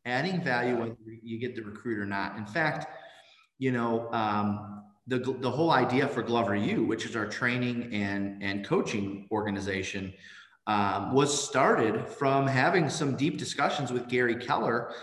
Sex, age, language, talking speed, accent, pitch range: male, 30-49, English, 160 wpm, American, 105-130 Hz